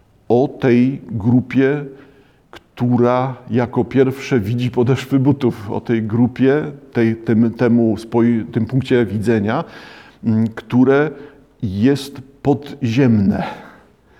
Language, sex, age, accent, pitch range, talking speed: Polish, male, 50-69, native, 115-135 Hz, 80 wpm